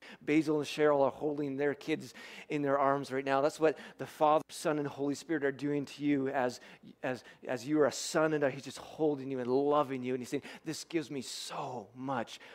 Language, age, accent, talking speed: English, 40-59, American, 230 wpm